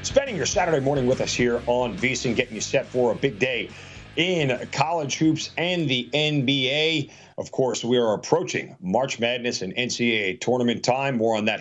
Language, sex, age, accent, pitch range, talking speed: English, male, 40-59, American, 115-135 Hz, 185 wpm